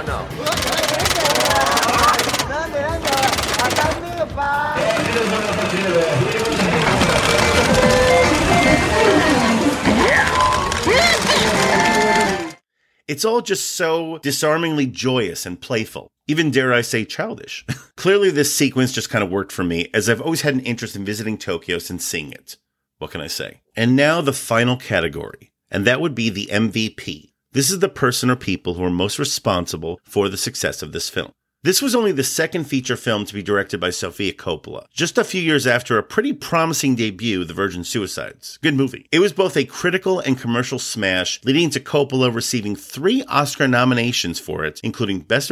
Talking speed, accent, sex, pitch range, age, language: 145 wpm, American, male, 110-160 Hz, 30-49, English